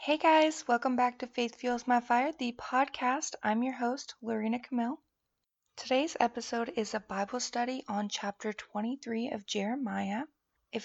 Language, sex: English, female